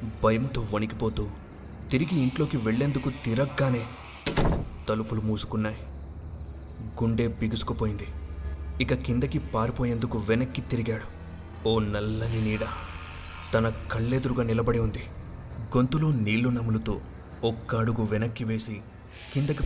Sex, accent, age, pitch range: male, native, 30-49, 100-115 Hz